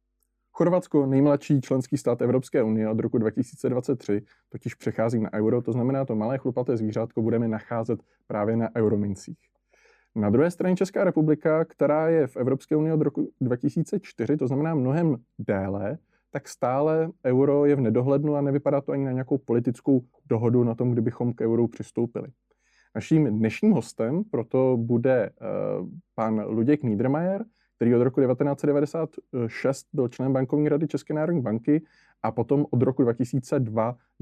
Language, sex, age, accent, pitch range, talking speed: Czech, male, 20-39, native, 115-145 Hz, 150 wpm